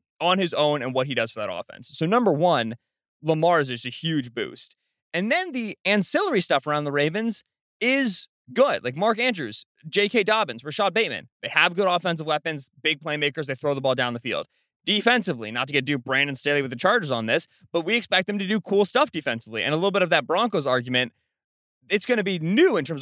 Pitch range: 135-190 Hz